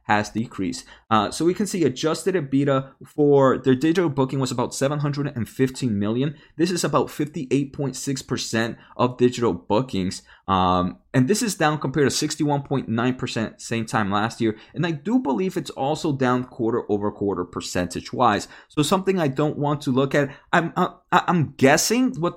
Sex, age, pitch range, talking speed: male, 20-39, 115-160 Hz, 170 wpm